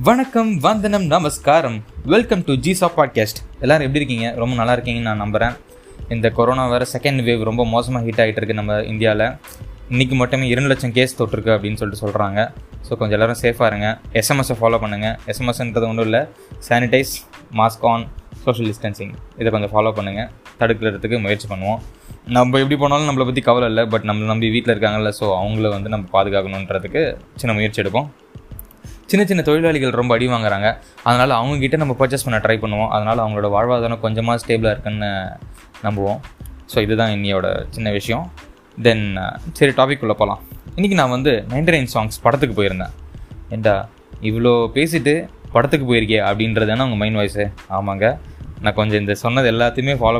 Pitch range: 110-130 Hz